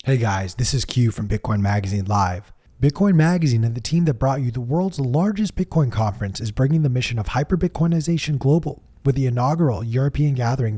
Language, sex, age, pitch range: English, male, 20-39, 105-135 Hz